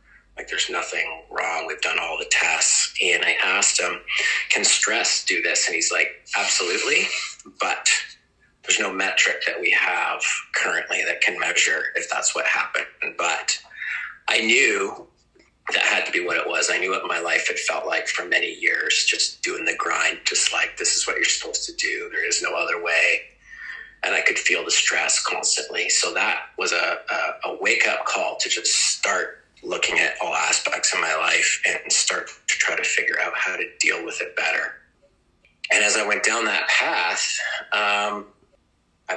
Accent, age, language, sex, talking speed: American, 30-49, English, male, 185 wpm